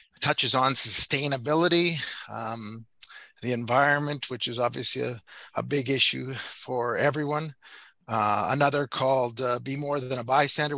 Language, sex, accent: English, male, American